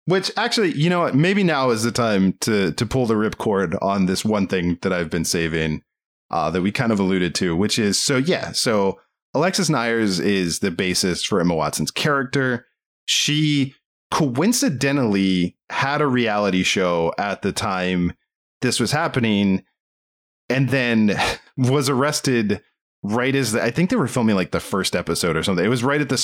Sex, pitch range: male, 90-135 Hz